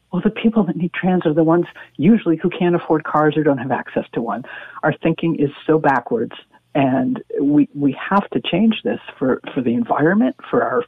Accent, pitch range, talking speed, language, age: American, 145-175 Hz, 210 wpm, English, 50-69